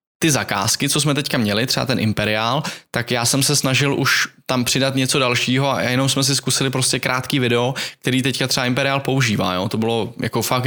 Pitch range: 115-130 Hz